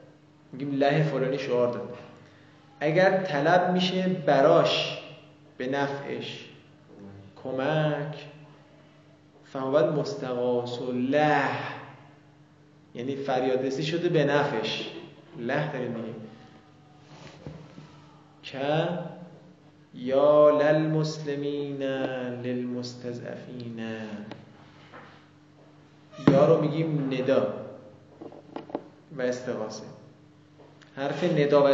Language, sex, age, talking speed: Persian, male, 30-49, 70 wpm